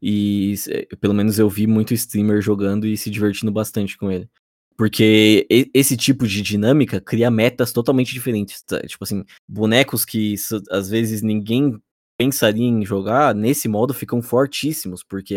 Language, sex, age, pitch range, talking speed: Portuguese, male, 20-39, 100-115 Hz, 150 wpm